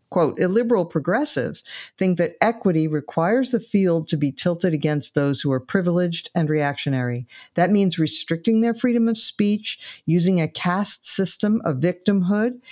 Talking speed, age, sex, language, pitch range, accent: 150 wpm, 50-69, female, English, 145-185 Hz, American